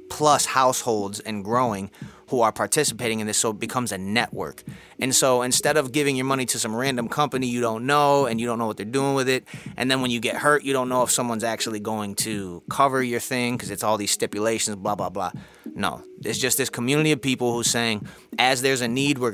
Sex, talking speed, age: male, 235 wpm, 30-49